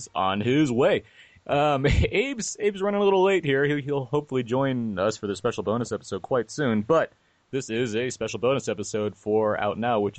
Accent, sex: American, male